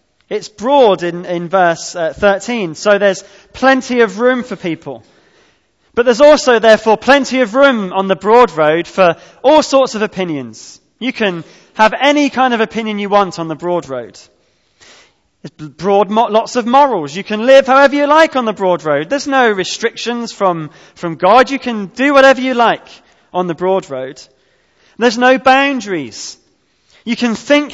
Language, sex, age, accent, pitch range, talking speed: English, male, 20-39, British, 185-250 Hz, 175 wpm